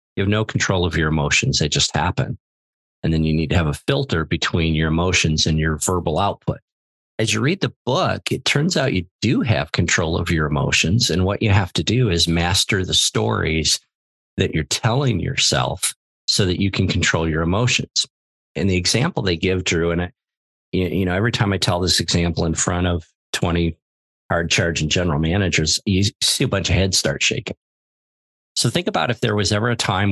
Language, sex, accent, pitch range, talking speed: English, male, American, 85-105 Hz, 200 wpm